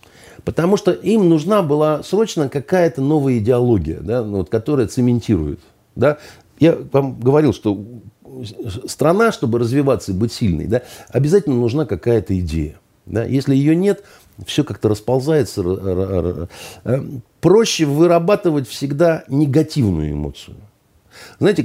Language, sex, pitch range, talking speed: Russian, male, 105-155 Hz, 105 wpm